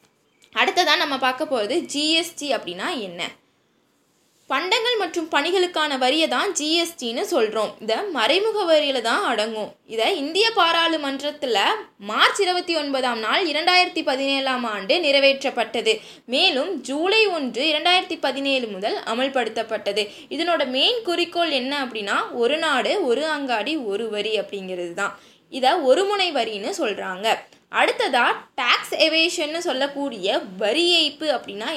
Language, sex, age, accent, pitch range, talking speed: Tamil, female, 20-39, native, 250-350 Hz, 115 wpm